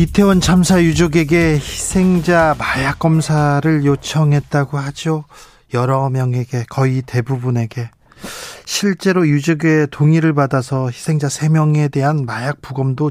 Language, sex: Korean, male